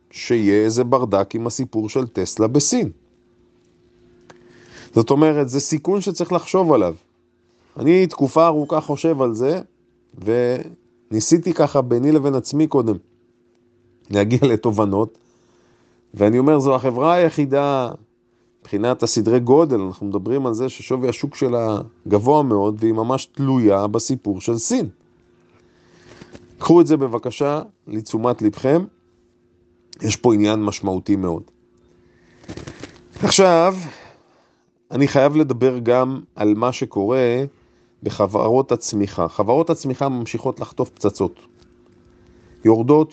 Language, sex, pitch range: Hebrew, male, 110-135 Hz